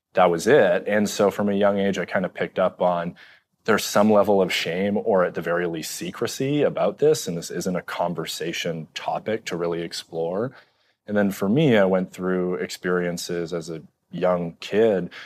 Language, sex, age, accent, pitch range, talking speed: English, male, 30-49, American, 85-105 Hz, 195 wpm